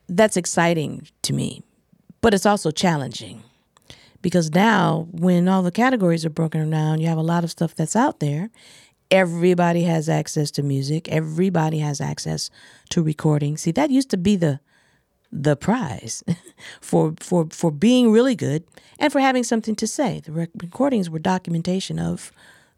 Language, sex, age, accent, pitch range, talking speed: English, female, 50-69, American, 155-205 Hz, 160 wpm